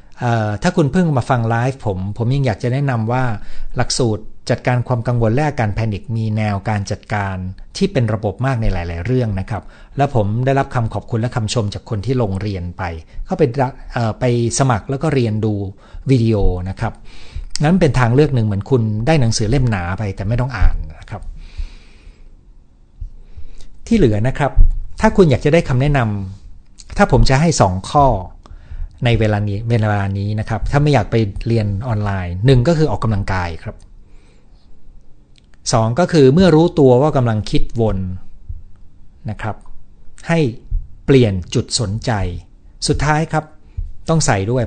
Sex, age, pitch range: male, 60-79, 95-130 Hz